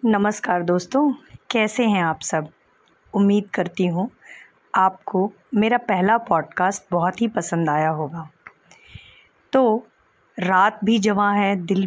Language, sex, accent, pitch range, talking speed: Hindi, female, native, 180-230 Hz, 120 wpm